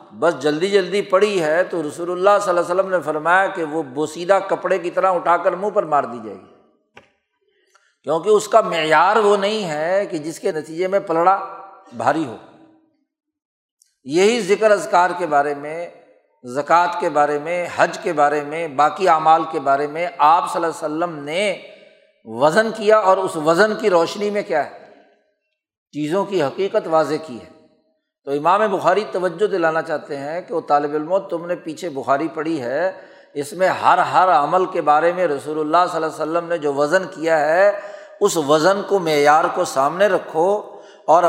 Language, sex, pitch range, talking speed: Urdu, male, 155-200 Hz, 185 wpm